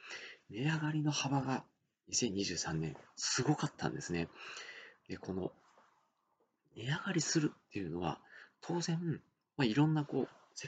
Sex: male